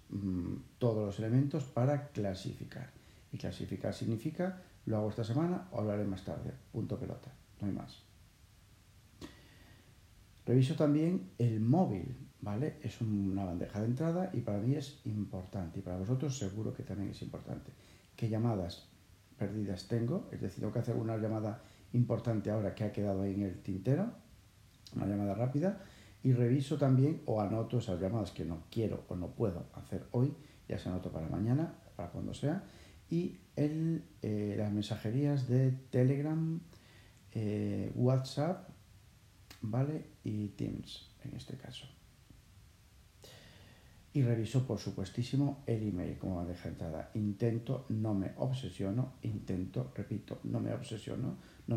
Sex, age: male, 50-69